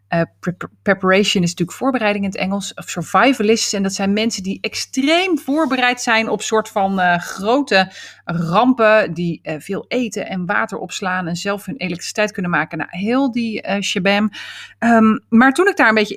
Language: Dutch